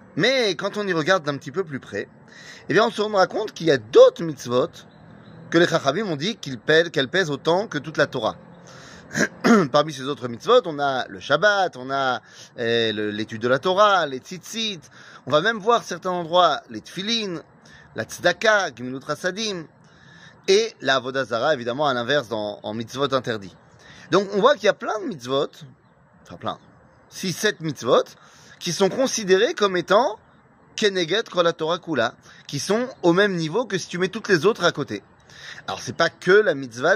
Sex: male